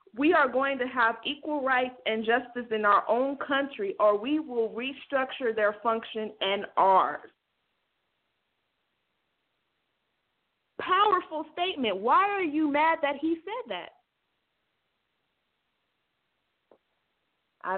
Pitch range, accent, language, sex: 210-275 Hz, American, English, female